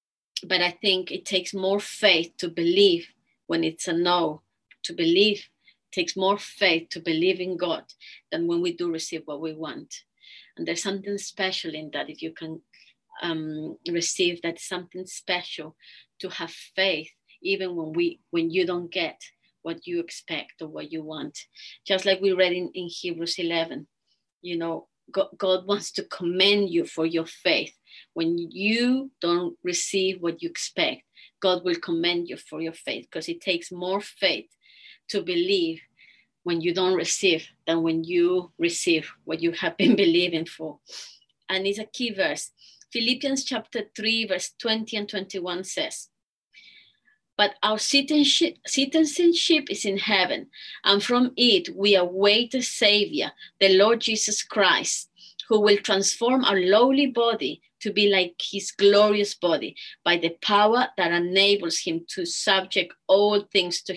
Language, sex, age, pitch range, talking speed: English, female, 30-49, 175-225 Hz, 155 wpm